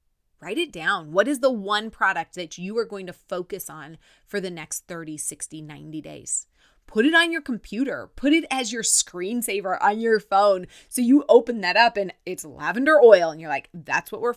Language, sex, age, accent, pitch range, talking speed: English, female, 30-49, American, 155-225 Hz, 210 wpm